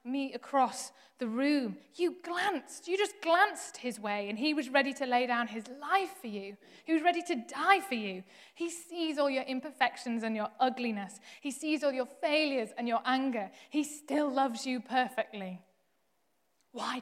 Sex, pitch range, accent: female, 210-260 Hz, British